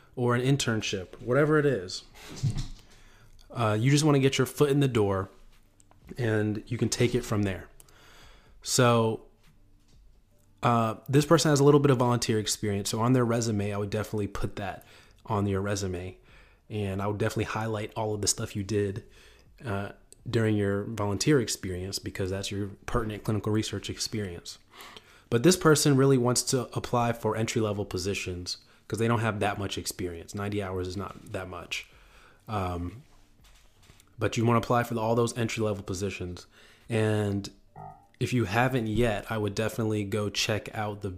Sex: male